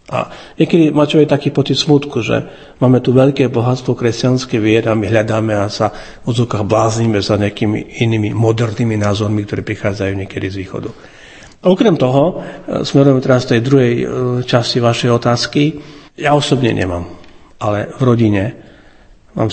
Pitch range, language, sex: 100-120 Hz, Slovak, male